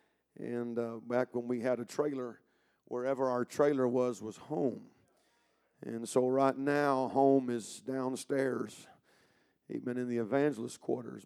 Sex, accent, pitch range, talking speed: male, American, 120-135 Hz, 140 wpm